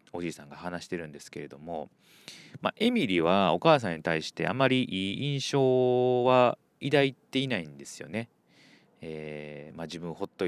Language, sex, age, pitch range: Japanese, male, 30-49, 80-120 Hz